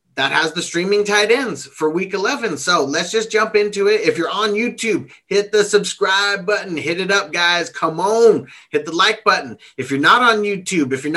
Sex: male